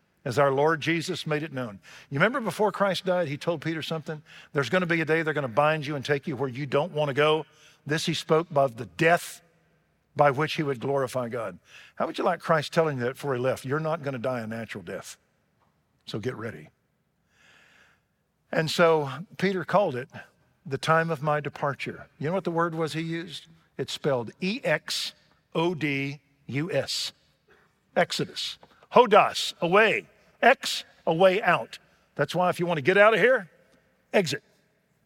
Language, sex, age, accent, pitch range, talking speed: English, male, 50-69, American, 135-170 Hz, 185 wpm